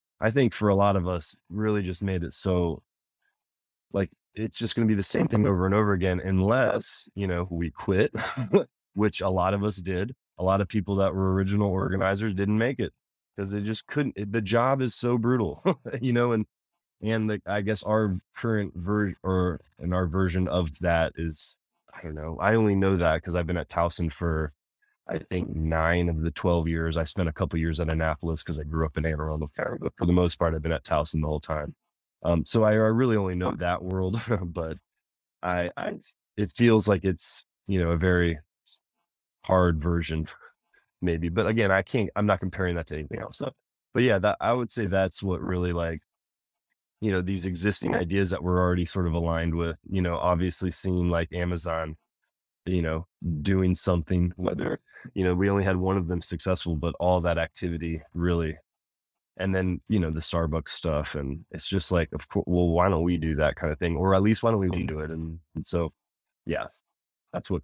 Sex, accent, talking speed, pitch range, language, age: male, American, 210 wpm, 80-100 Hz, English, 20-39